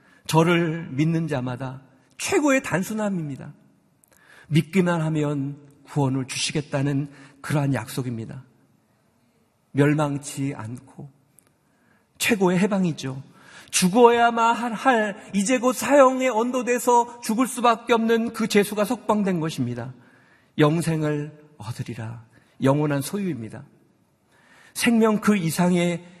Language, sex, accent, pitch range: Korean, male, native, 145-220 Hz